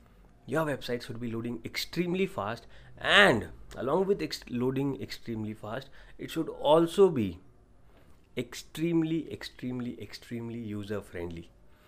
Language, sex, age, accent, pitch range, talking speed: English, male, 30-49, Indian, 115-155 Hz, 115 wpm